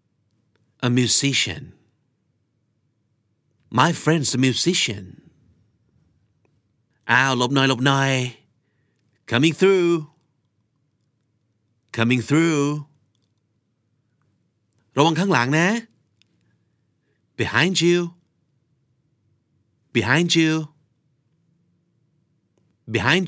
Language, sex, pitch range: Thai, male, 110-140 Hz